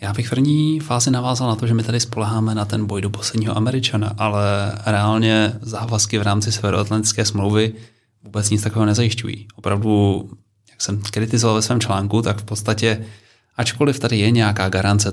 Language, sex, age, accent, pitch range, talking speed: Czech, male, 30-49, native, 105-115 Hz, 170 wpm